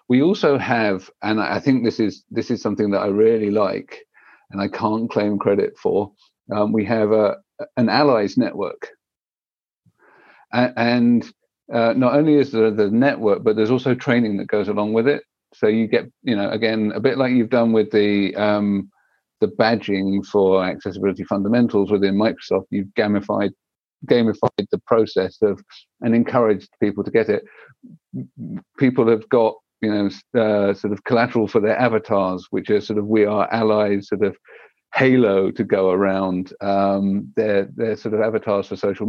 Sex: male